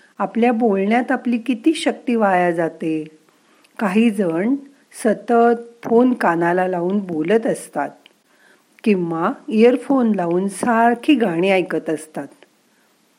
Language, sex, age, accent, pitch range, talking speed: Marathi, female, 50-69, native, 175-240 Hz, 95 wpm